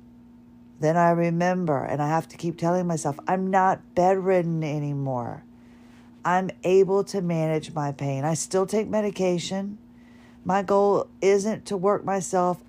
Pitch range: 130-185 Hz